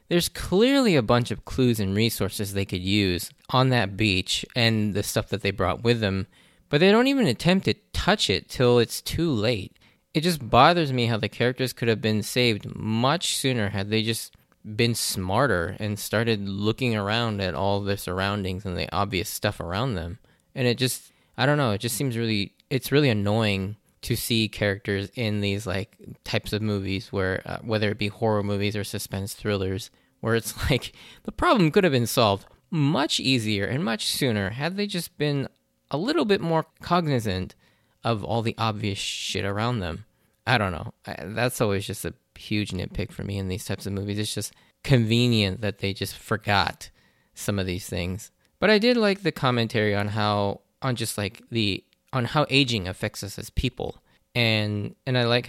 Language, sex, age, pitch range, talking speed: English, male, 20-39, 100-125 Hz, 190 wpm